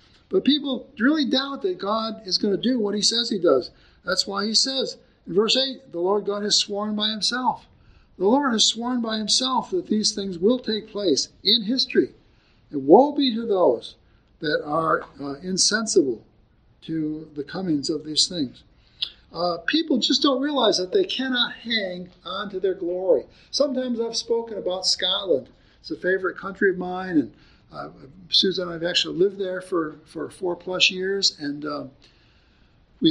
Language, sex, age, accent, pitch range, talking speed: English, male, 60-79, American, 185-255 Hz, 180 wpm